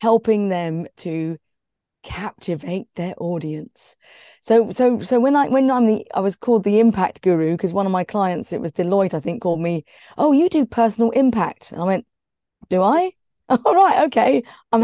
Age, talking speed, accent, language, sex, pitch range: 30-49, 185 wpm, British, English, female, 190-250 Hz